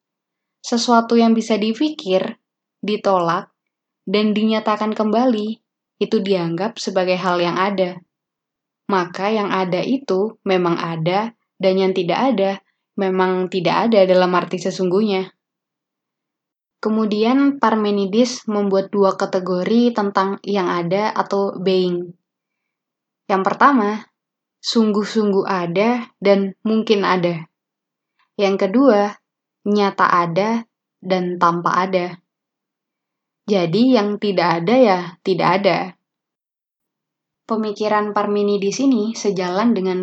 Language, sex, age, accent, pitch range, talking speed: Indonesian, female, 20-39, native, 185-215 Hz, 100 wpm